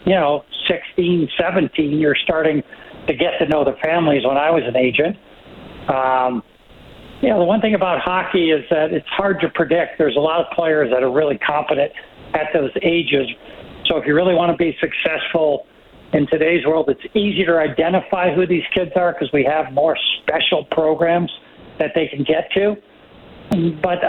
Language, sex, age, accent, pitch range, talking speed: English, male, 60-79, American, 145-175 Hz, 185 wpm